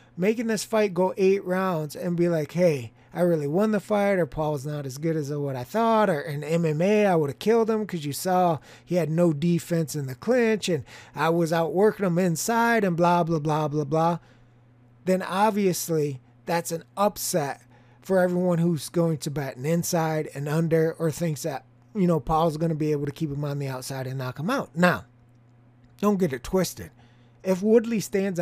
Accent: American